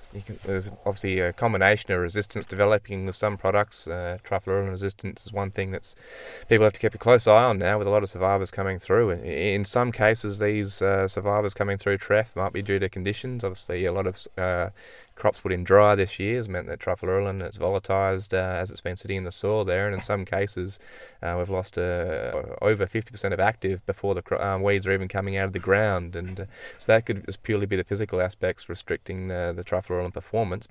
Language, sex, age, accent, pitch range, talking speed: English, male, 20-39, Australian, 95-105 Hz, 225 wpm